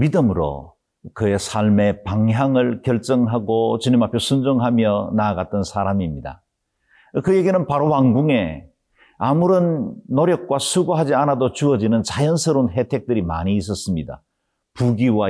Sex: male